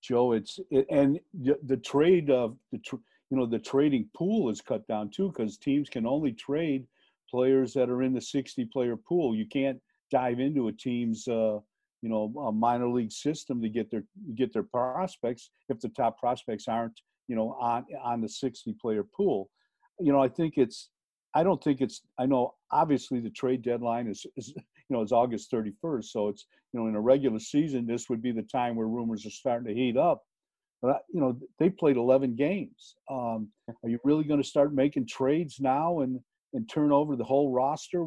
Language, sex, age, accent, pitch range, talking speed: English, male, 50-69, American, 120-145 Hz, 200 wpm